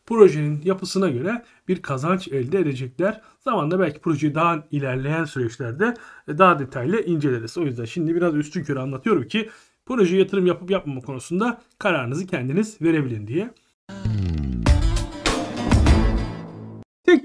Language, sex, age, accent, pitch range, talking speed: Turkish, male, 40-59, native, 170-240 Hz, 120 wpm